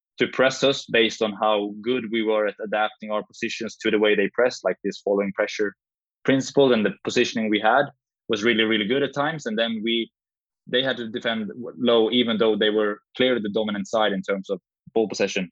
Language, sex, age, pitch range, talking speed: English, male, 20-39, 105-120 Hz, 215 wpm